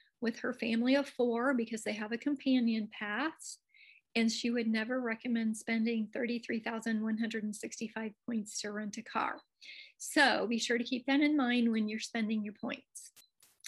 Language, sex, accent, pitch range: English, female, American, 225-270 Hz